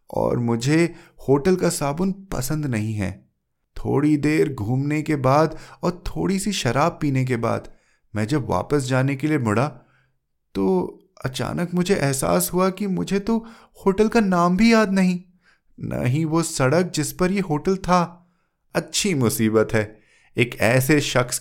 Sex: male